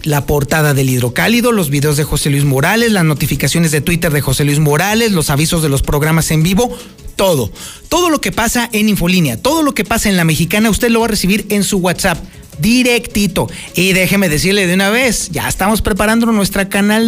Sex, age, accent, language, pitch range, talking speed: male, 40-59, Mexican, Spanish, 155-225 Hz, 205 wpm